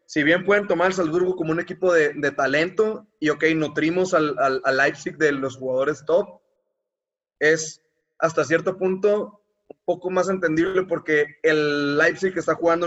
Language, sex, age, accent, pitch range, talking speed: Spanish, male, 20-39, Mexican, 150-180 Hz, 165 wpm